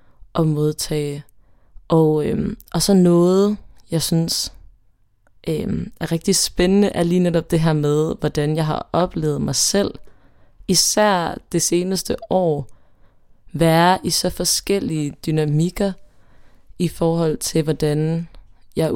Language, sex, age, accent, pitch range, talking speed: Danish, female, 20-39, native, 115-170 Hz, 115 wpm